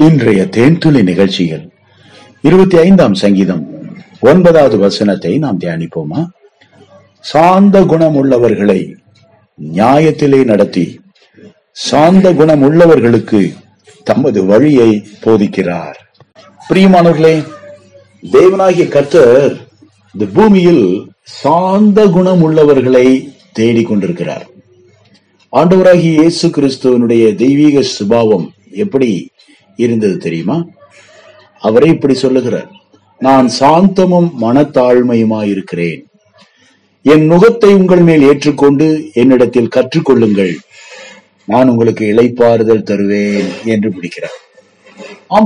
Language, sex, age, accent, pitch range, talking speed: Tamil, male, 50-69, native, 110-175 Hz, 55 wpm